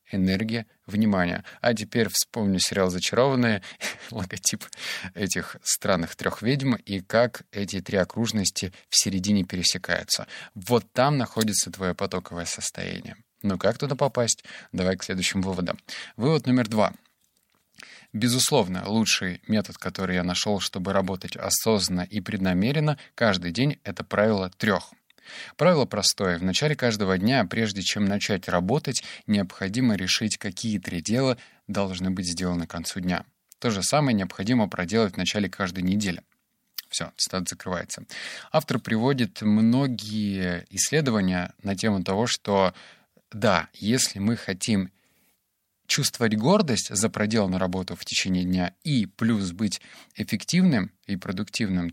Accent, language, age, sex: native, Russian, 20-39, male